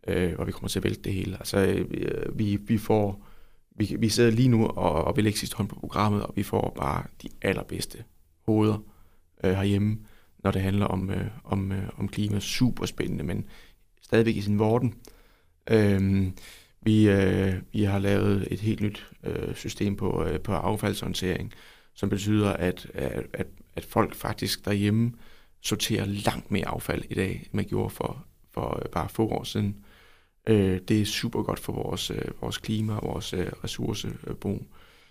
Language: Danish